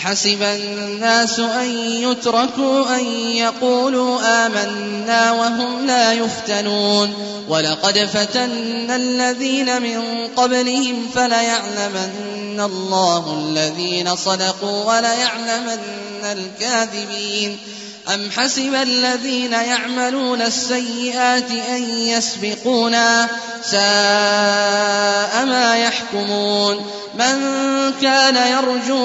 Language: Arabic